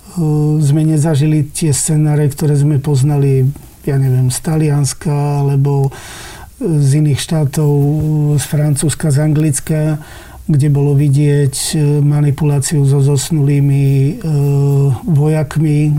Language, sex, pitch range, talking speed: Slovak, male, 135-150 Hz, 100 wpm